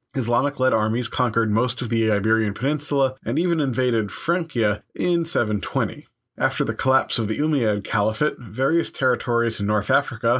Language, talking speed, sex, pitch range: English, 150 wpm, male, 110-140 Hz